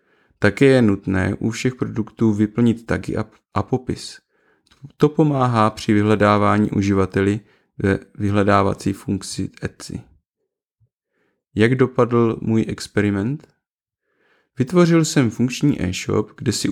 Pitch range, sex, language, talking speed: 100-120 Hz, male, Czech, 105 wpm